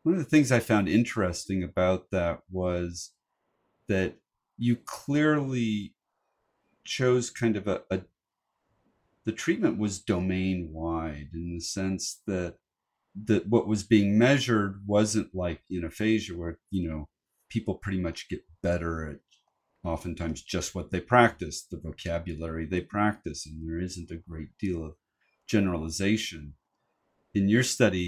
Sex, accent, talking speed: male, American, 140 wpm